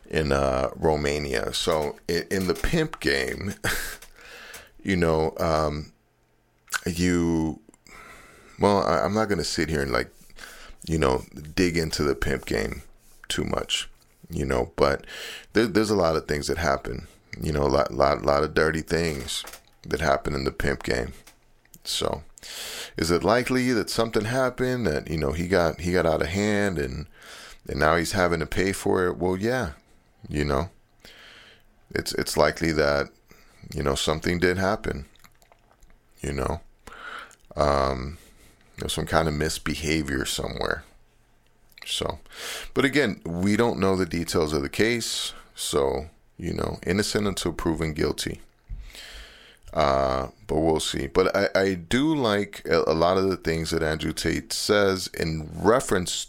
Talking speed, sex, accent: 150 wpm, male, American